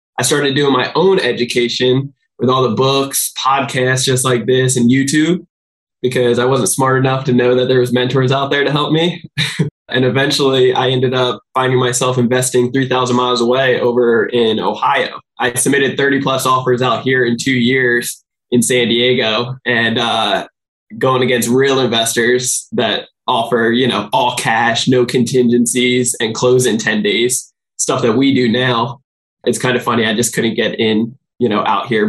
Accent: American